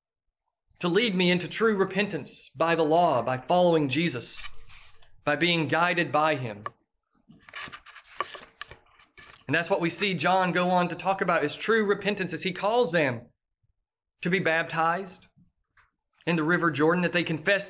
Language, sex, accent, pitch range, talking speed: English, male, American, 170-210 Hz, 155 wpm